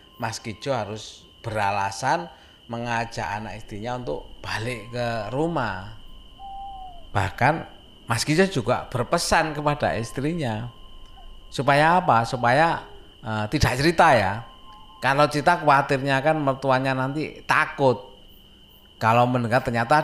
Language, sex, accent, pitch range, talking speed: Indonesian, male, native, 115-160 Hz, 100 wpm